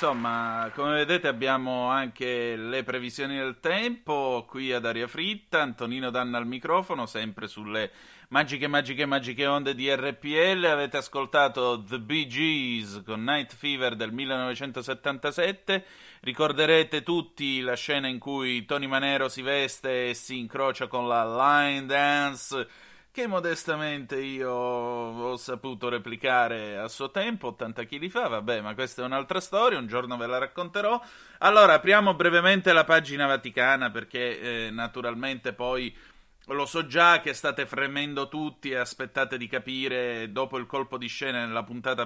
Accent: native